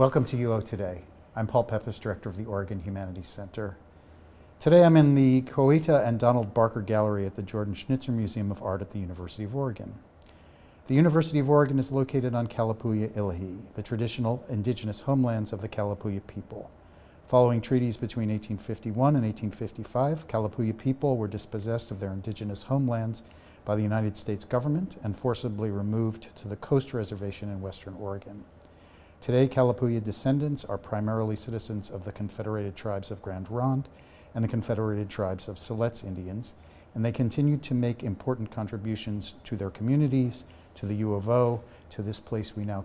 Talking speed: 170 wpm